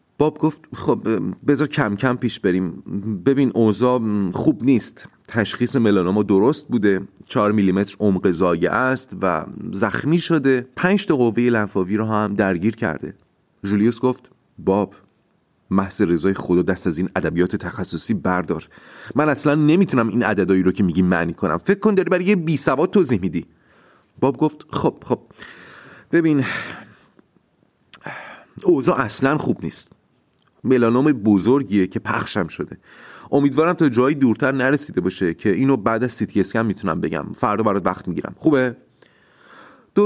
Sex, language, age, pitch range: male, Persian, 30-49, 100-150 Hz